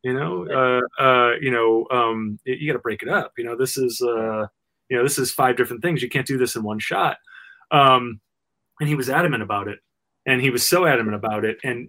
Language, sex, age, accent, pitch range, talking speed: English, male, 30-49, American, 115-155 Hz, 235 wpm